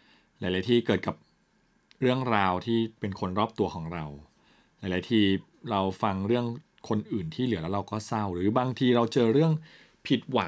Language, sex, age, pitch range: Thai, male, 20-39, 95-125 Hz